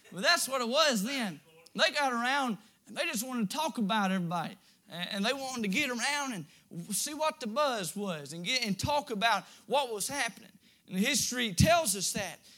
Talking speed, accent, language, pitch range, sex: 205 wpm, American, English, 210-285 Hz, male